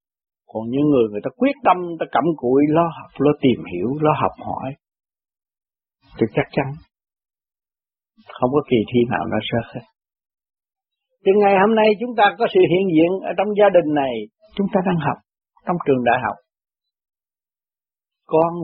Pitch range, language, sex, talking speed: 155-220 Hz, Vietnamese, male, 170 wpm